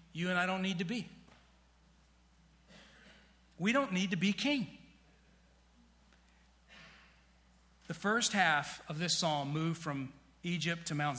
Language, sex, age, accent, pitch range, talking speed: English, male, 40-59, American, 150-190 Hz, 130 wpm